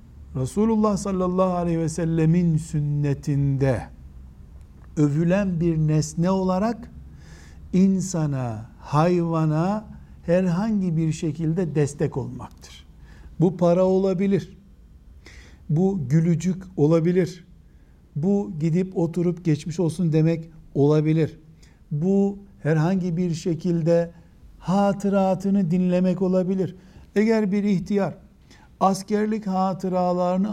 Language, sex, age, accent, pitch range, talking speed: Turkish, male, 60-79, native, 140-190 Hz, 85 wpm